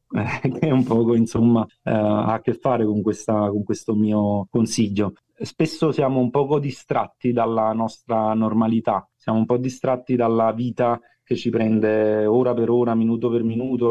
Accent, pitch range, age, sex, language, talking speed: native, 110-125 Hz, 30-49, male, Italian, 165 wpm